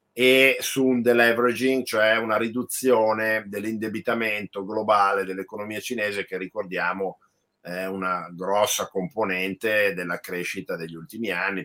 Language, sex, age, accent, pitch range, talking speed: Italian, male, 50-69, native, 95-120 Hz, 115 wpm